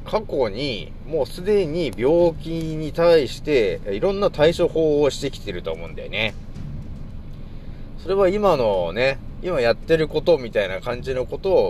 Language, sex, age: Japanese, male, 30-49